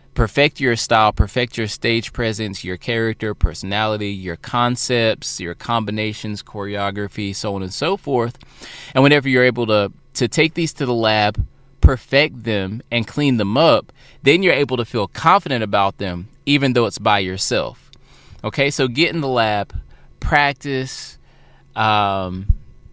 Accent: American